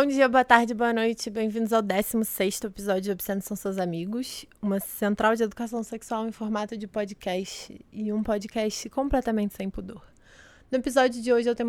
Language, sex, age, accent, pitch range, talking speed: Portuguese, female, 20-39, Brazilian, 200-235 Hz, 190 wpm